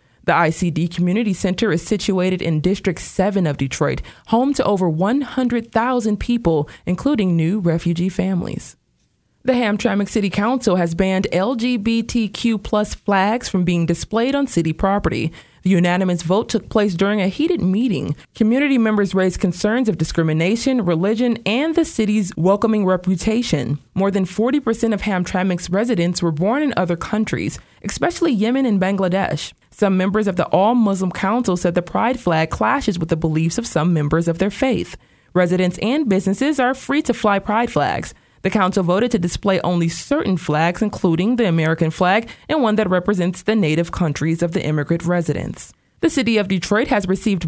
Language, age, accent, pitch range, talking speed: English, 20-39, American, 175-225 Hz, 165 wpm